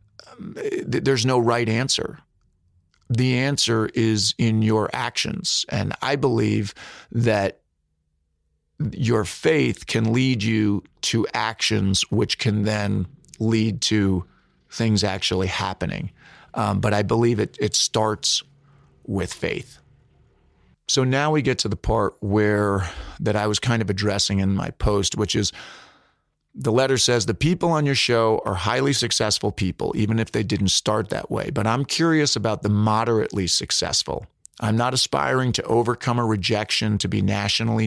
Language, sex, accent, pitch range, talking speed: English, male, American, 100-120 Hz, 145 wpm